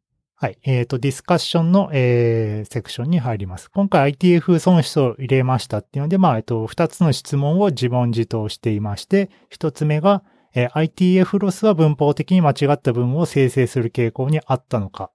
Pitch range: 120-180 Hz